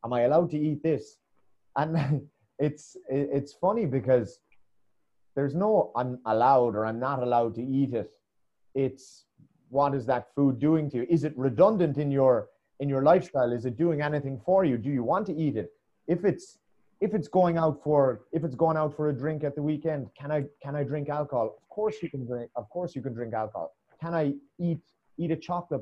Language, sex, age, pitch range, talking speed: English, male, 30-49, 130-165 Hz, 210 wpm